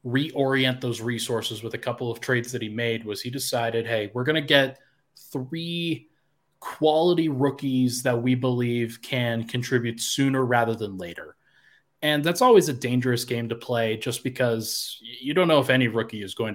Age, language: 20-39, English